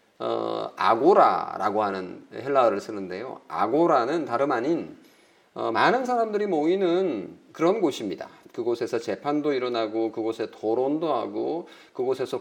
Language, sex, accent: Korean, male, native